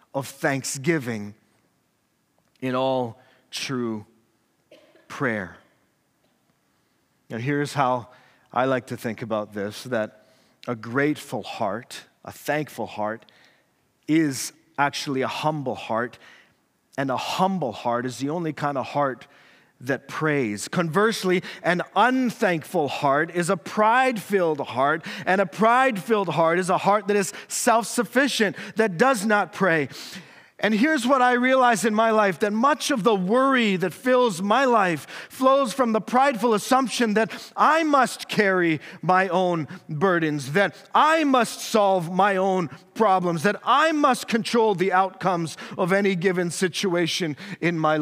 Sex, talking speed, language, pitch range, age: male, 135 wpm, English, 140-220 Hz, 40-59